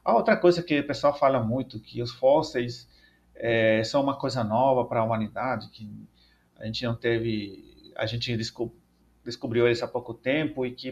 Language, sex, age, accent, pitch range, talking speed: Portuguese, male, 40-59, Brazilian, 110-145 Hz, 180 wpm